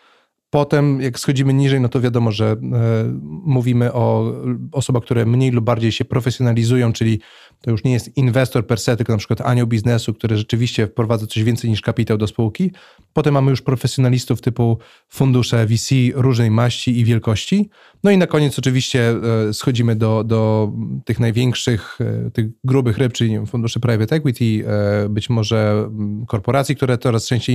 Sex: male